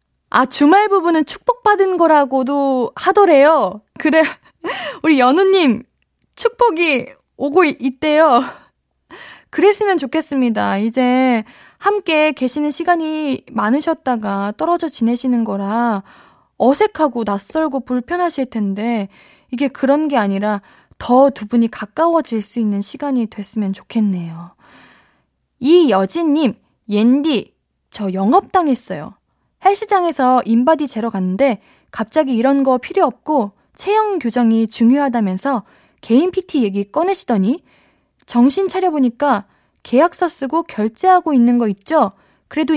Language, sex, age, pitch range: Korean, female, 20-39, 225-315 Hz